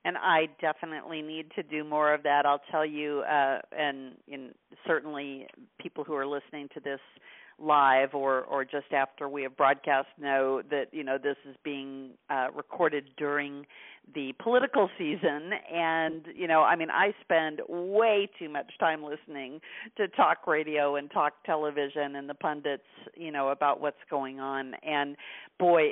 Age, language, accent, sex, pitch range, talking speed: 50-69, English, American, female, 140-170 Hz, 165 wpm